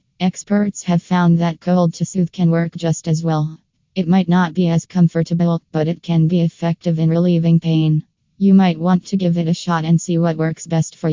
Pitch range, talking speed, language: 165-180 Hz, 215 wpm, English